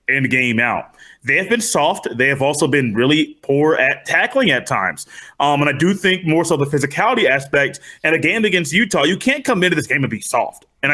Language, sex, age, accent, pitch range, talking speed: English, male, 30-49, American, 135-170 Hz, 235 wpm